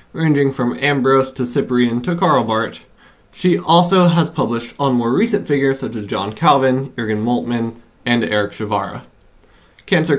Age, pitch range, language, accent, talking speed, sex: 20-39, 120-145 Hz, English, American, 155 wpm, male